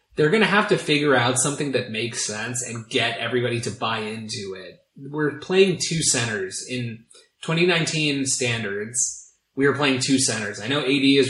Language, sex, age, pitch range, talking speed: English, male, 20-39, 115-140 Hz, 180 wpm